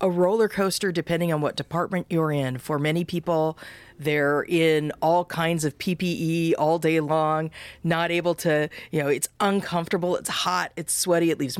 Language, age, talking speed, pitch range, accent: English, 40-59, 175 wpm, 150-180 Hz, American